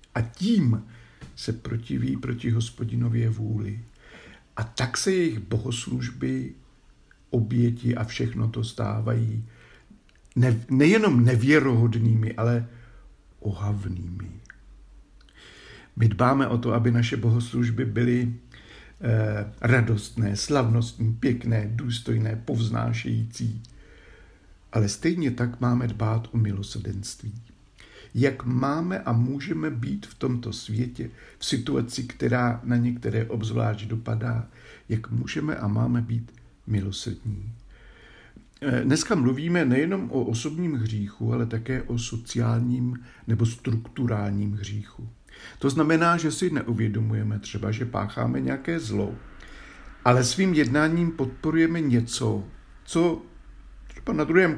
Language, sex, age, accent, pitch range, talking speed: Czech, male, 60-79, native, 110-125 Hz, 105 wpm